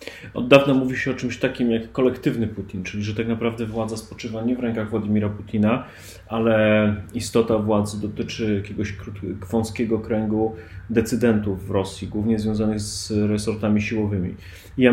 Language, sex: Polish, male